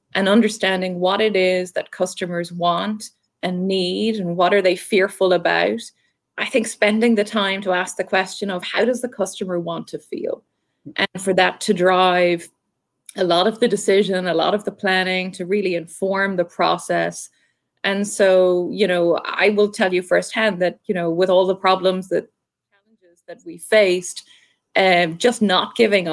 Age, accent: 20-39, Irish